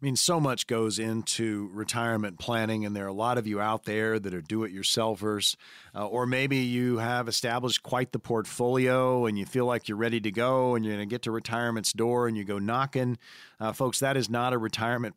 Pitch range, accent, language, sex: 110-145 Hz, American, English, male